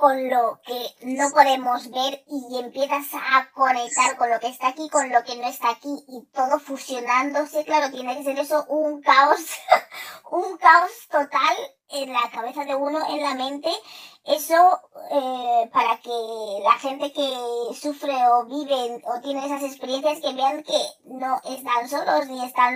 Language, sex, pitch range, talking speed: Spanish, male, 245-295 Hz, 170 wpm